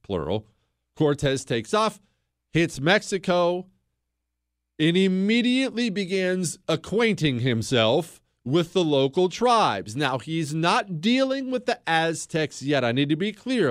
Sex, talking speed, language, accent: male, 125 wpm, English, American